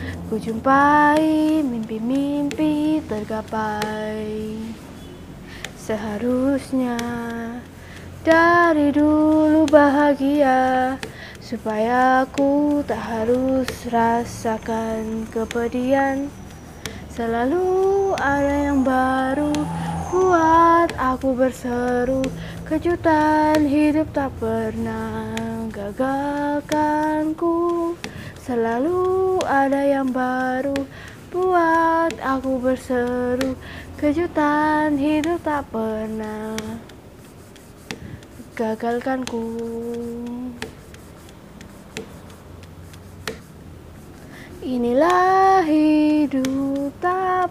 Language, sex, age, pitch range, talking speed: Indonesian, female, 20-39, 230-305 Hz, 55 wpm